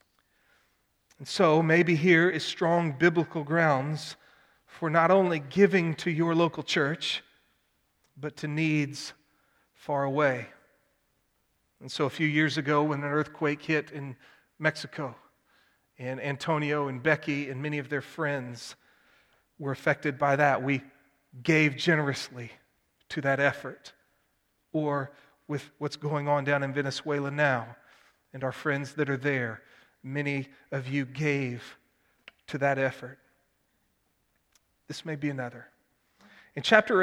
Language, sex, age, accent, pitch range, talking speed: English, male, 40-59, American, 140-175 Hz, 130 wpm